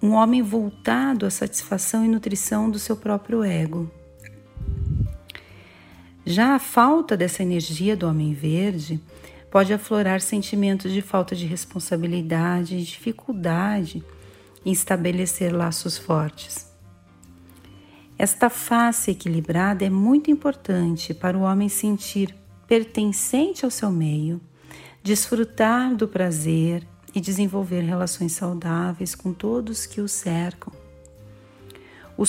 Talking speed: 110 wpm